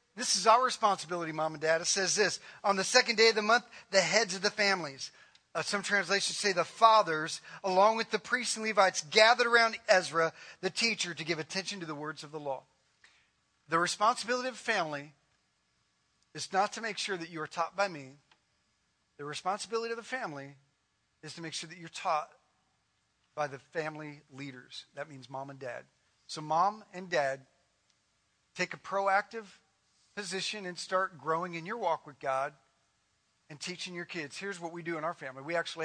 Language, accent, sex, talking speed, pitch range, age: English, American, male, 190 wpm, 150-200 Hz, 40-59